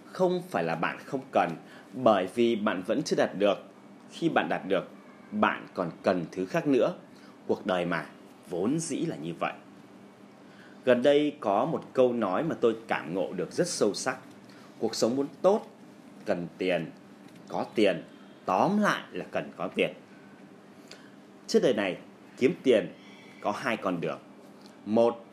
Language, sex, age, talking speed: Vietnamese, male, 30-49, 165 wpm